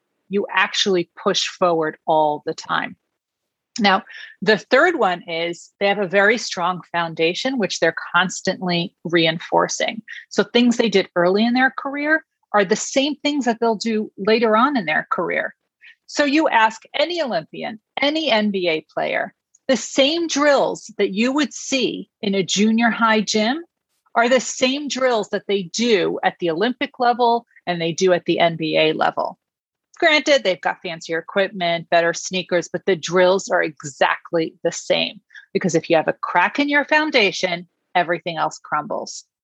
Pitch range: 175-240 Hz